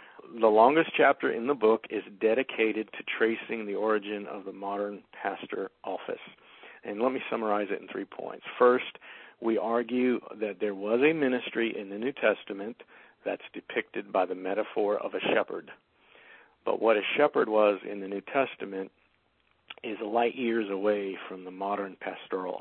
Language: English